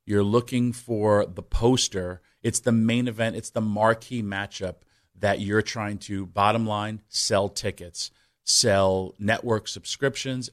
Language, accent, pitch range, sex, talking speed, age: English, American, 105-125 Hz, male, 135 wpm, 30-49